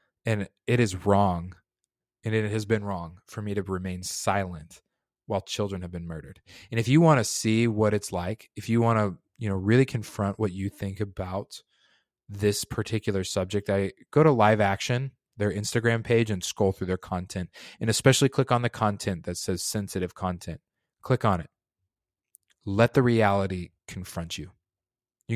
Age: 20-39